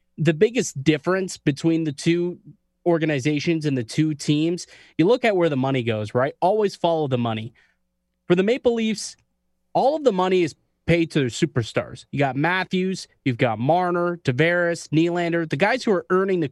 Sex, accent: male, American